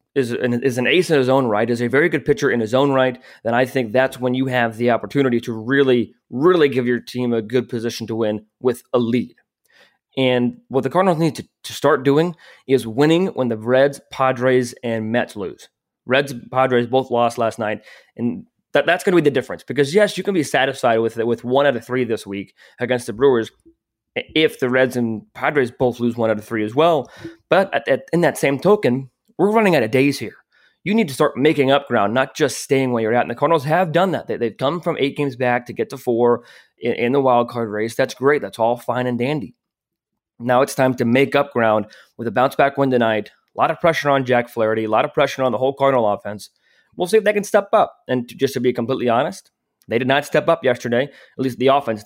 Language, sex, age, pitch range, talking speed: English, male, 20-39, 120-140 Hz, 235 wpm